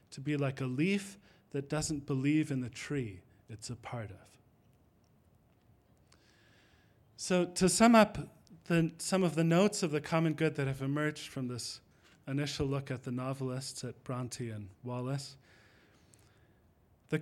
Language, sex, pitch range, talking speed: English, male, 125-155 Hz, 150 wpm